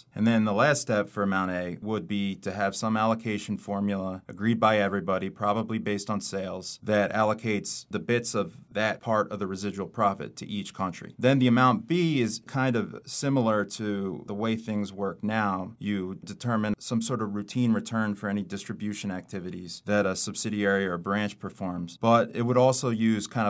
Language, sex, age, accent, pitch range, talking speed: English, male, 30-49, American, 100-115 Hz, 185 wpm